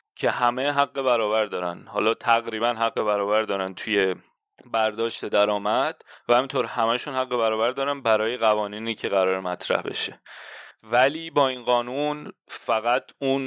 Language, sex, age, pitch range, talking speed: Persian, male, 30-49, 105-135 Hz, 140 wpm